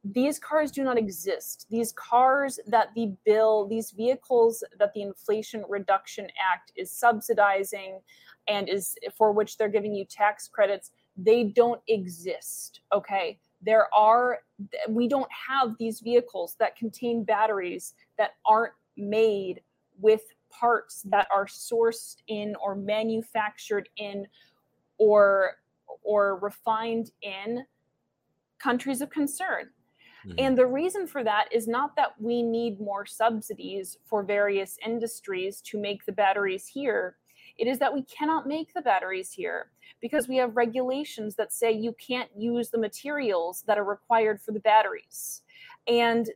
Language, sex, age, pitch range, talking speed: English, female, 20-39, 205-245 Hz, 140 wpm